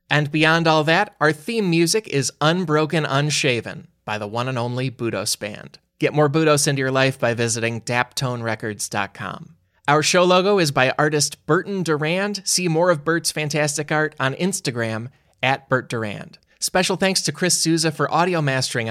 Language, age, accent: English, 20-39, American